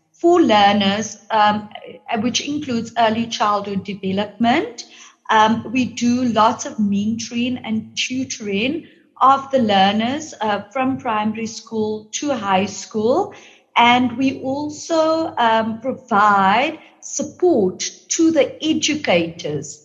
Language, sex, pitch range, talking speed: English, female, 210-255 Hz, 105 wpm